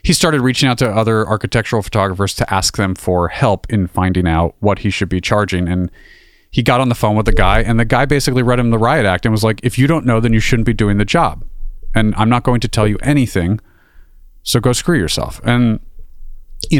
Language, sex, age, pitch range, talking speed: English, male, 30-49, 95-120 Hz, 240 wpm